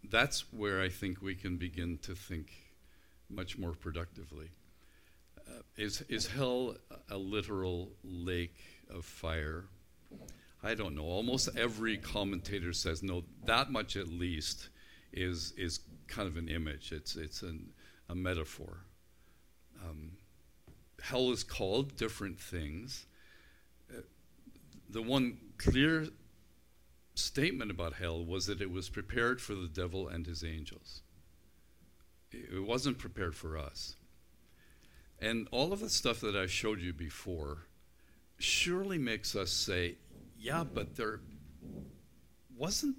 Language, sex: English, male